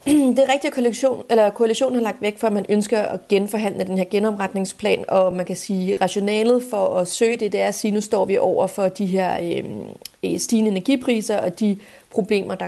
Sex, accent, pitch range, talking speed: female, native, 195-230 Hz, 210 wpm